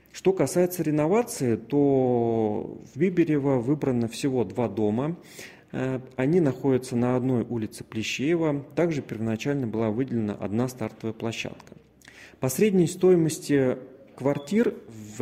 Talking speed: 110 wpm